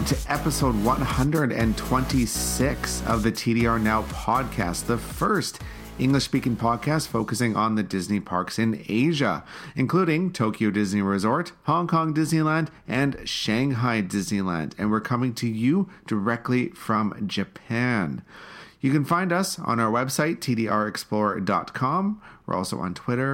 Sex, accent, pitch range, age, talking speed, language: male, American, 110-150 Hz, 40-59, 125 wpm, English